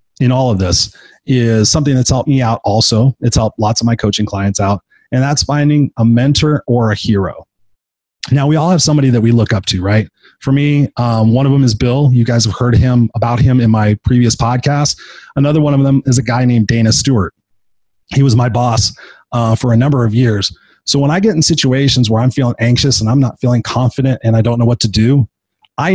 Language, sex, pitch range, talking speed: English, male, 115-140 Hz, 230 wpm